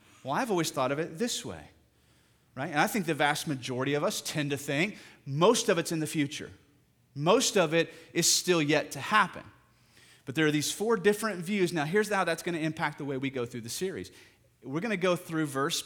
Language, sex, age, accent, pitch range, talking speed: English, male, 30-49, American, 135-185 Hz, 230 wpm